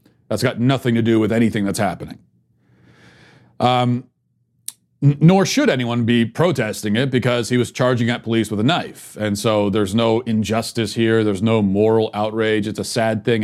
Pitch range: 105-125 Hz